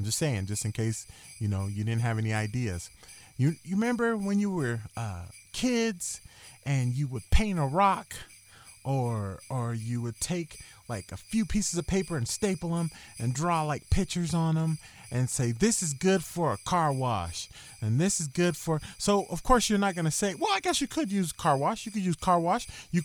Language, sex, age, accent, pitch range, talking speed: English, male, 30-49, American, 115-190 Hz, 215 wpm